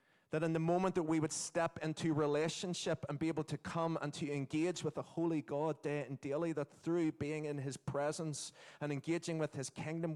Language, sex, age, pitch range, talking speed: English, male, 30-49, 130-160 Hz, 215 wpm